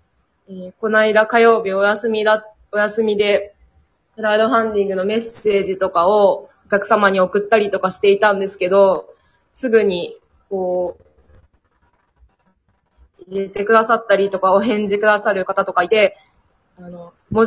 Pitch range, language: 190-225 Hz, Japanese